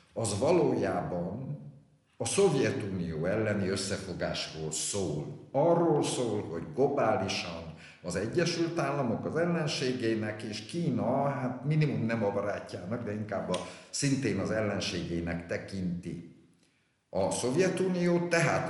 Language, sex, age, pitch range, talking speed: Hungarian, male, 50-69, 90-130 Hz, 105 wpm